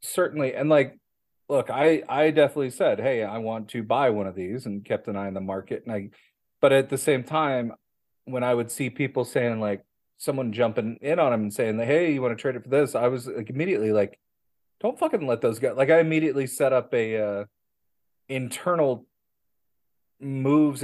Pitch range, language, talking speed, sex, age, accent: 105-135 Hz, English, 205 wpm, male, 40-59, American